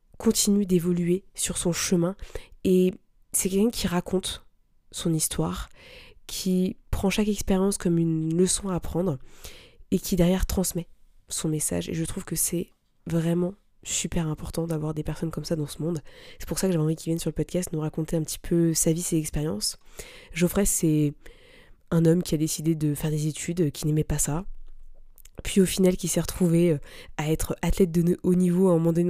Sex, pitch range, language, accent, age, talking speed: female, 160-185 Hz, French, French, 20-39, 195 wpm